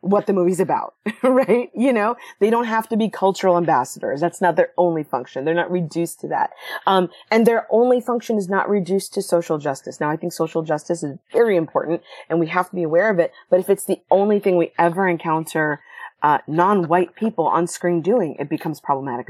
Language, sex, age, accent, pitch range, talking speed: English, female, 30-49, American, 165-220 Hz, 215 wpm